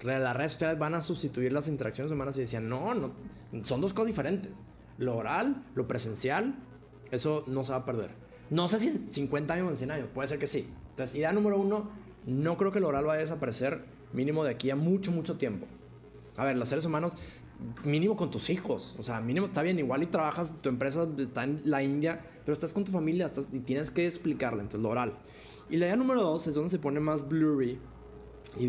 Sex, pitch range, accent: male, 125-165 Hz, Mexican